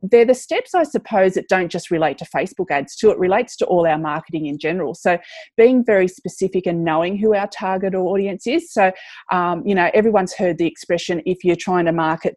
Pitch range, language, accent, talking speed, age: 170-210 Hz, English, Australian, 220 wpm, 30-49